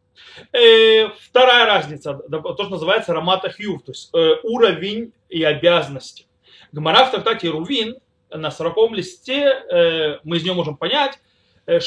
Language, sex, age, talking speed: Russian, male, 30-49, 125 wpm